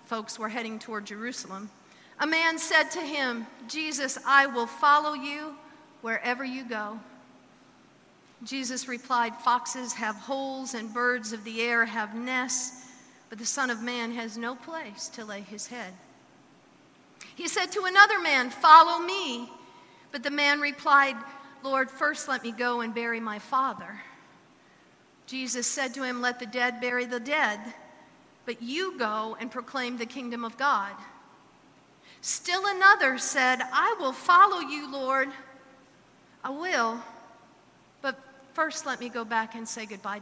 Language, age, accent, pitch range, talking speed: English, 50-69, American, 230-285 Hz, 150 wpm